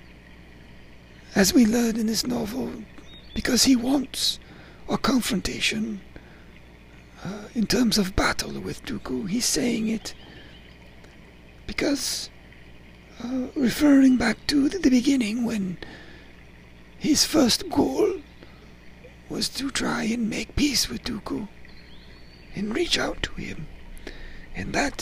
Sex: male